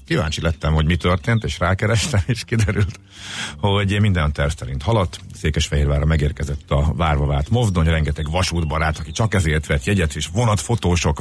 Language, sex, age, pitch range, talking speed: Hungarian, male, 50-69, 80-110 Hz, 155 wpm